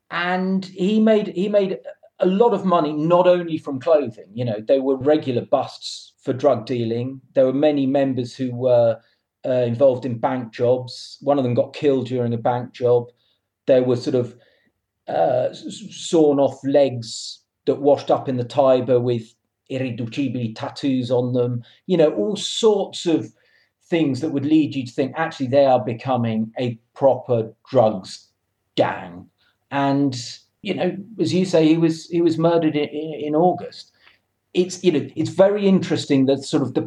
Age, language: 40-59, English